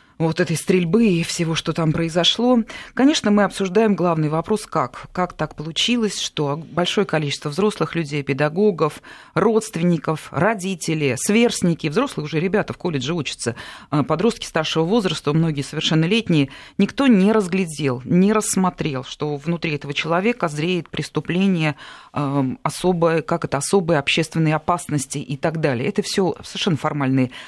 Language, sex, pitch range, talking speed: Russian, female, 155-215 Hz, 135 wpm